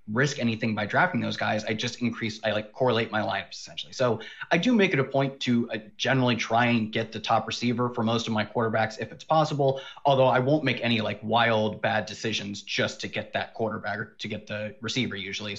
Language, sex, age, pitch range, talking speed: English, male, 30-49, 110-130 Hz, 225 wpm